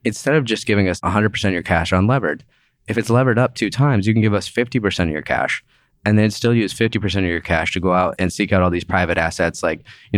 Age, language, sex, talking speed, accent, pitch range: 20-39, English, male, 260 wpm, American, 90-115 Hz